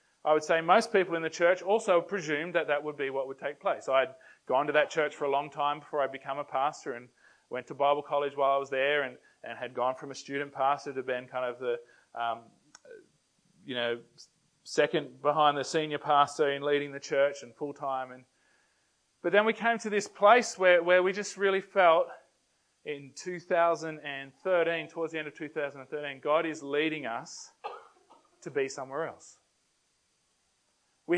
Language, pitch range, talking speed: English, 140-180 Hz, 190 wpm